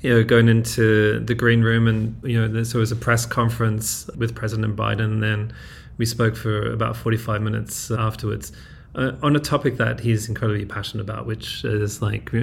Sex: male